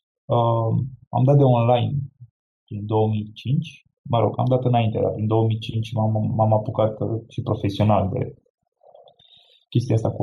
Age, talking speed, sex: 20-39, 140 wpm, male